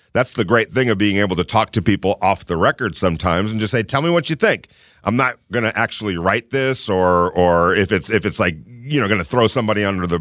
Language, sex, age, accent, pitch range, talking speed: English, male, 40-59, American, 95-120 Hz, 265 wpm